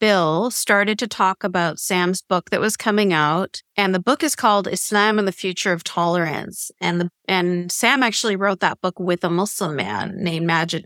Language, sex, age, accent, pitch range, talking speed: English, female, 30-49, American, 185-235 Hz, 200 wpm